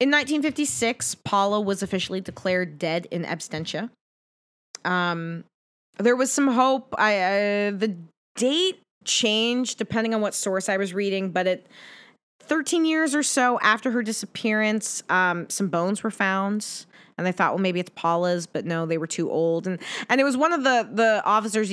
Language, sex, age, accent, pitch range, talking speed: English, female, 20-39, American, 180-245 Hz, 170 wpm